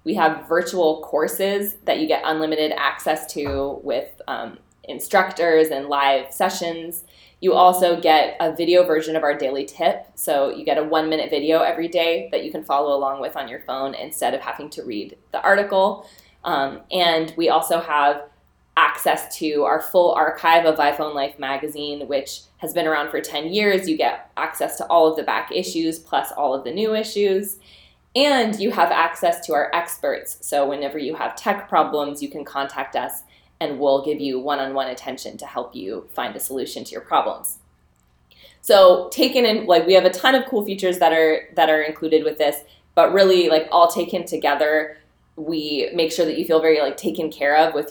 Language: English